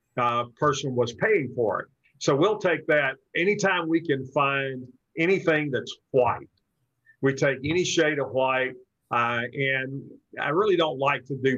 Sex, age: male, 50-69